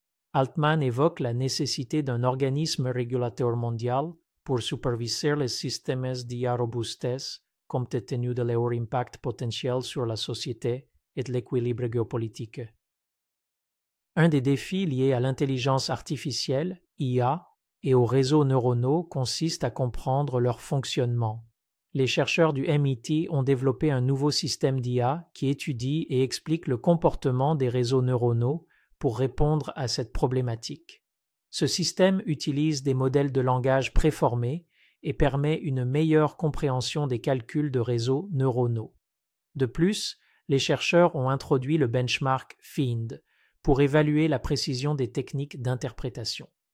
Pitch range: 125-150 Hz